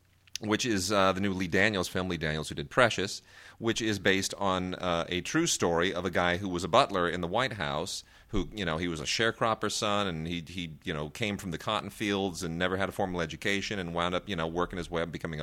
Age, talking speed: 30-49, 255 wpm